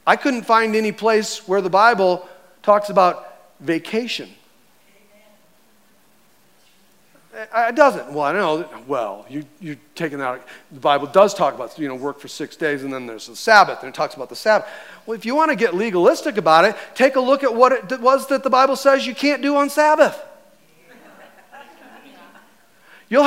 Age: 40-59